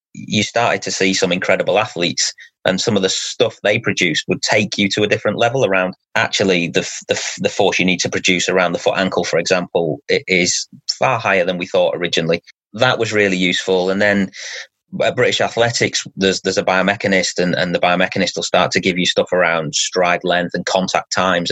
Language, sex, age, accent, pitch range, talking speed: English, male, 30-49, British, 90-120 Hz, 205 wpm